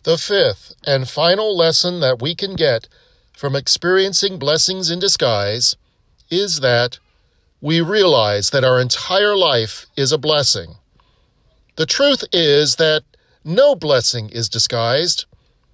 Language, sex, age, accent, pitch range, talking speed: English, male, 40-59, American, 120-170 Hz, 125 wpm